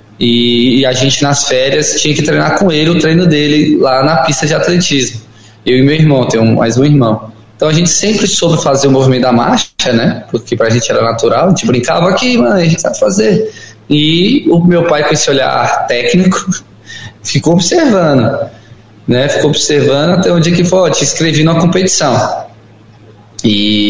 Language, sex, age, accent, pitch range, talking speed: Portuguese, male, 20-39, Brazilian, 120-155 Hz, 190 wpm